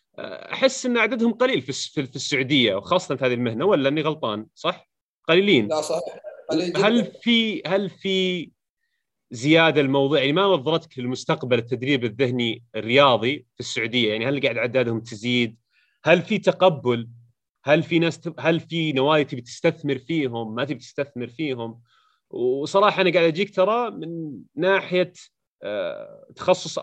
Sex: male